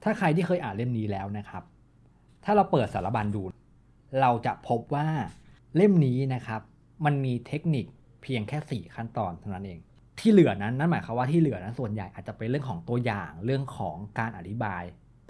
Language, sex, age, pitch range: Thai, male, 20-39, 105-145 Hz